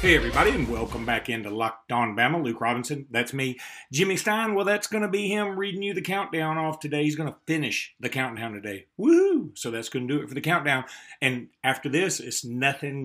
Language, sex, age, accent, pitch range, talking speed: English, male, 40-59, American, 120-150 Hz, 225 wpm